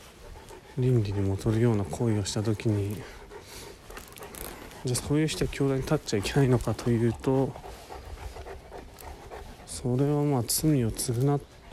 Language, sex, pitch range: Japanese, male, 105-135 Hz